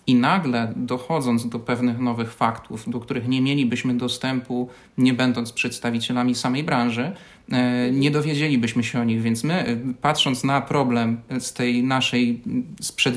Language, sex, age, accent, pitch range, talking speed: Polish, male, 30-49, native, 120-140 Hz, 140 wpm